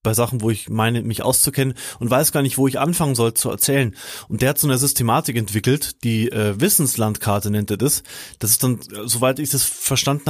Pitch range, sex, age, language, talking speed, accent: 120-145 Hz, male, 30-49, German, 215 wpm, German